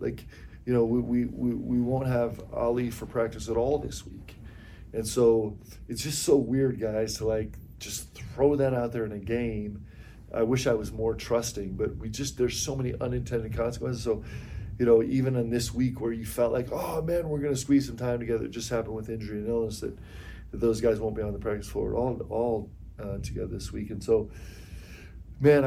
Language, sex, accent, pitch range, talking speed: English, male, American, 105-120 Hz, 215 wpm